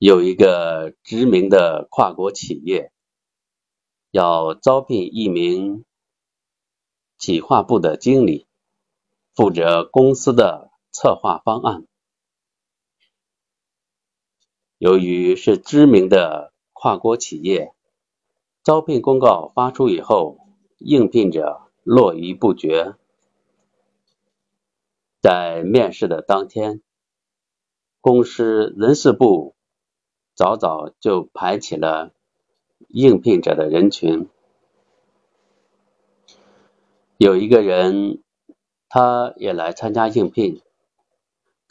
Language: Chinese